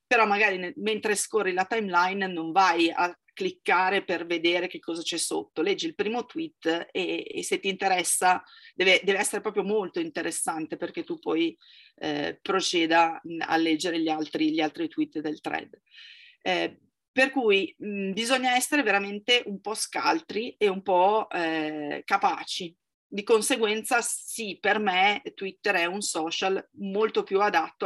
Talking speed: 150 wpm